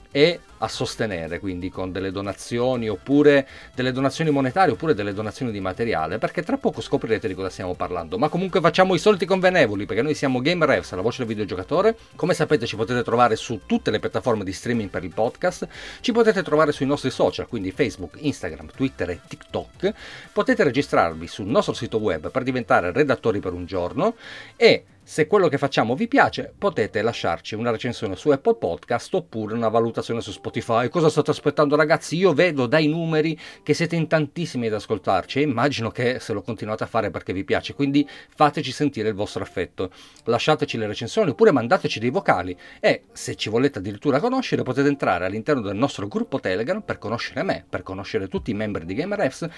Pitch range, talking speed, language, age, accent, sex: 110-155 Hz, 190 wpm, Italian, 40-59, native, male